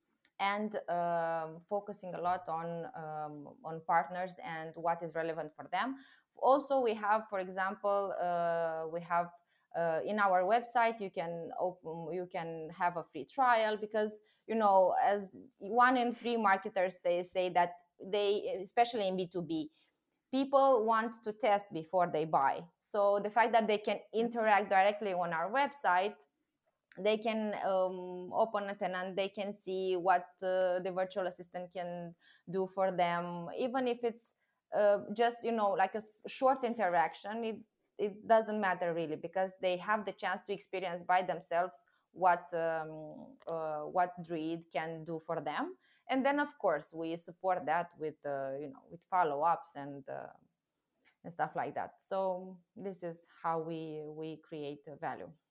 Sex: female